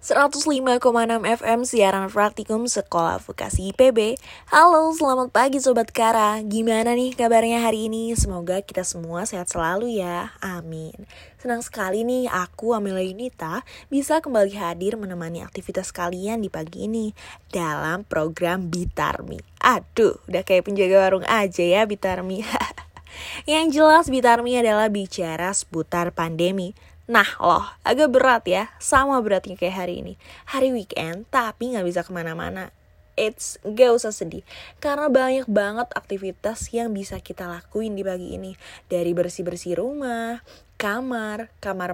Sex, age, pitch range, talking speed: female, 20-39, 185-240 Hz, 130 wpm